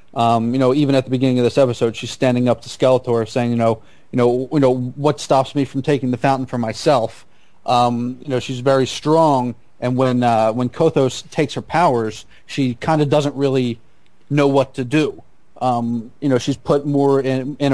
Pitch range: 120-140 Hz